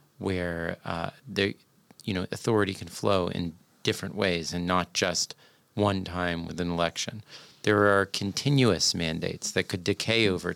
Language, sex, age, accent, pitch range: Chinese, male, 40-59, American, 90-105 Hz